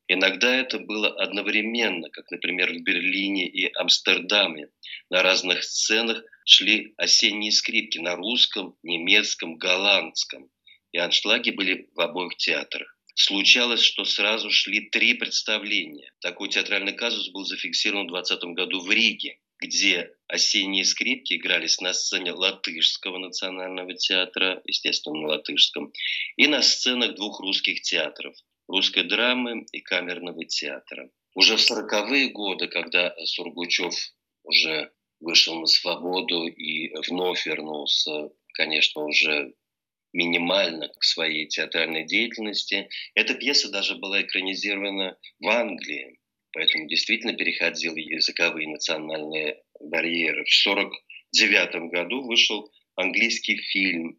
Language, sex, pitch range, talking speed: Russian, male, 85-110 Hz, 115 wpm